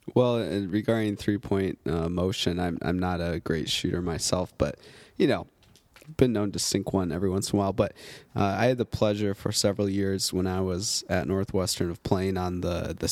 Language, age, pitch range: English, 20-39, 95-110 Hz